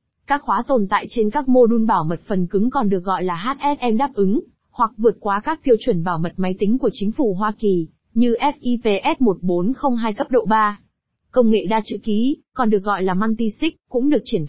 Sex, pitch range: female, 200-250 Hz